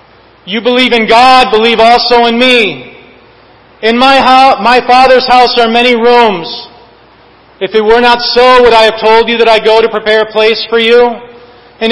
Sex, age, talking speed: male, 40-59, 180 wpm